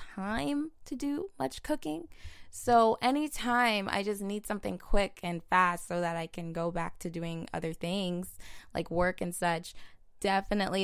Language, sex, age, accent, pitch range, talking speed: English, female, 20-39, American, 165-205 Hz, 160 wpm